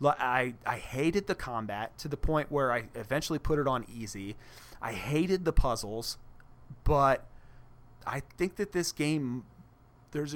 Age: 30-49